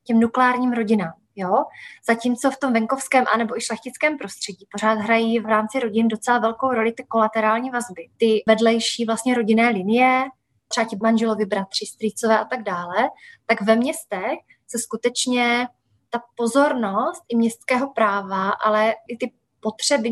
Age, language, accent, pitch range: 20-39, Czech, native, 220-245 Hz